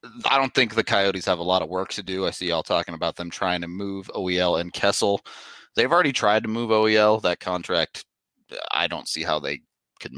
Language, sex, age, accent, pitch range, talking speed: English, male, 30-49, American, 90-125 Hz, 225 wpm